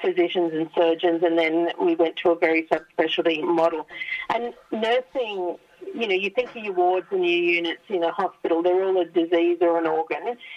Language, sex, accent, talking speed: English, female, Australian, 200 wpm